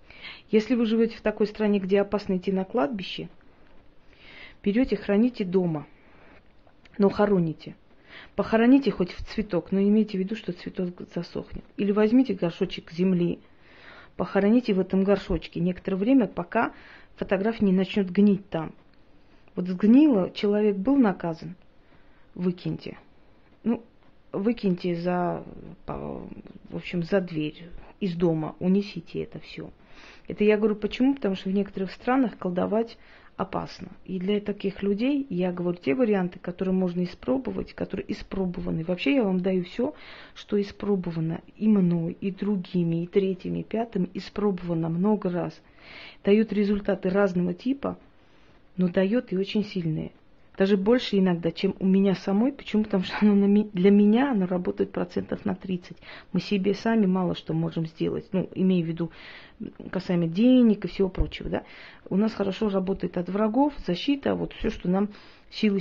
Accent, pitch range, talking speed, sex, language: native, 180-210 Hz, 145 wpm, female, Russian